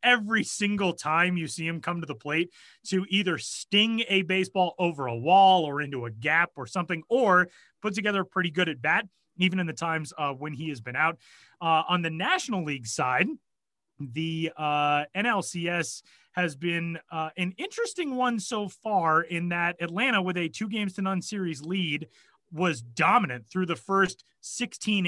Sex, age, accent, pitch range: male, 30-49, American, 150-190 Hz